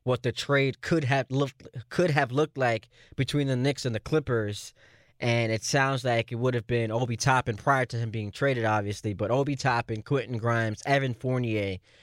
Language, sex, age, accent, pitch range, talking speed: English, male, 20-39, American, 115-135 Hz, 185 wpm